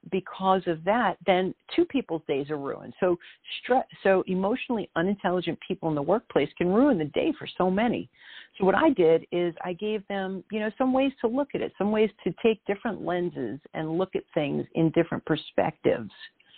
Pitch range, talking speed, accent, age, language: 165-205 Hz, 195 wpm, American, 50-69, English